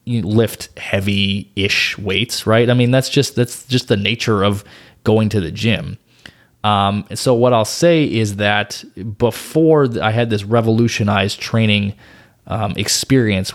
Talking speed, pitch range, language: 150 wpm, 105-125 Hz, English